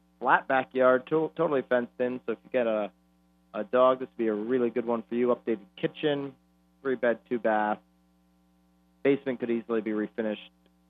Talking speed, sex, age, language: 175 wpm, male, 30-49, English